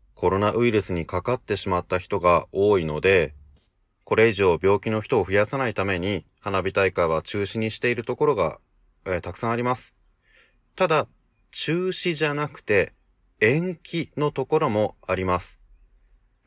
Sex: male